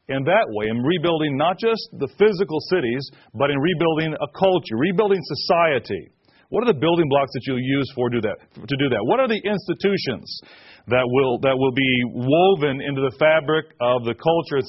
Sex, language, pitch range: male, English, 125-160 Hz